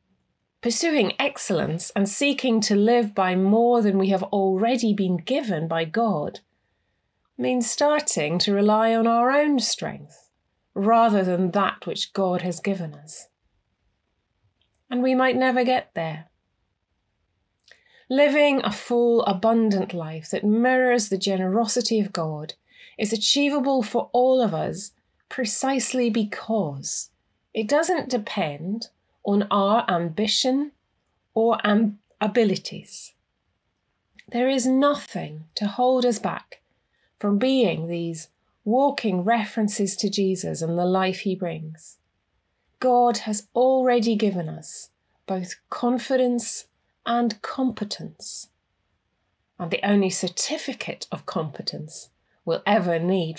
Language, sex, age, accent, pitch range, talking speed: English, female, 30-49, British, 170-240 Hz, 115 wpm